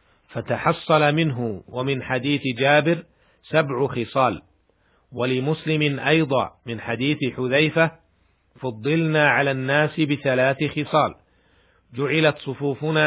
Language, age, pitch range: Arabic, 50-69, 125-150 Hz